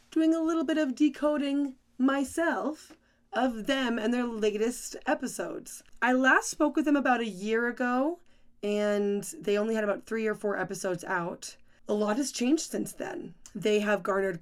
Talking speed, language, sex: 170 wpm, English, female